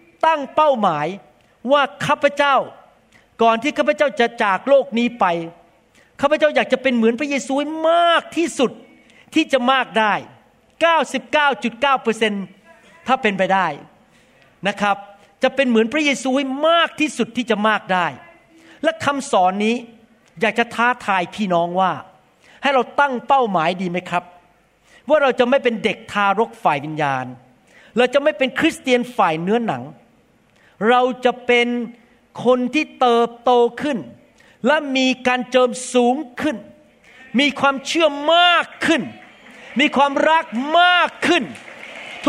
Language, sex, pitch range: Thai, male, 230-295 Hz